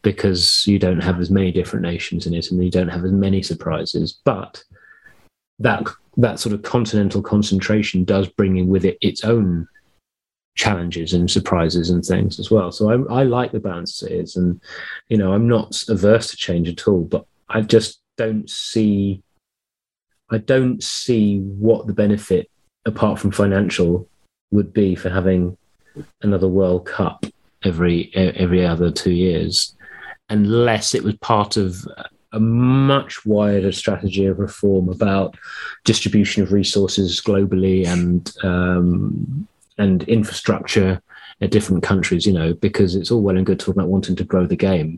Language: English